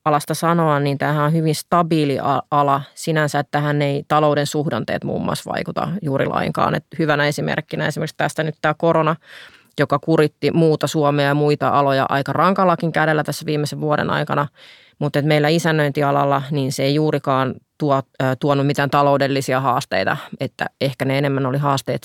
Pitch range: 140-160 Hz